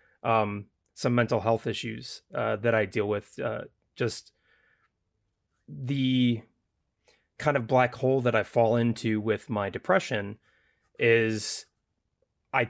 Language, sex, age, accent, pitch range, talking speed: English, male, 30-49, American, 110-125 Hz, 125 wpm